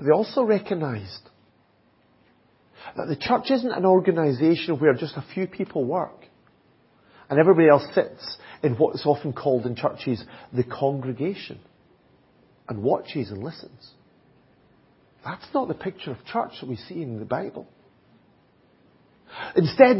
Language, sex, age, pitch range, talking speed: English, male, 40-59, 140-220 Hz, 135 wpm